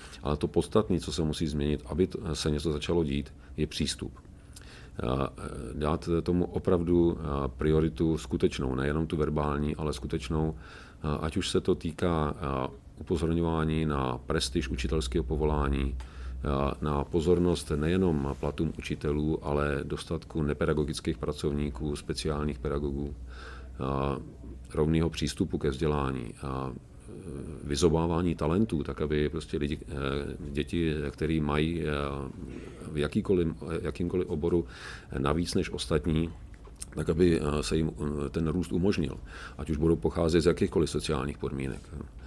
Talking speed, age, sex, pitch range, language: 110 wpm, 40-59, male, 75-85 Hz, Czech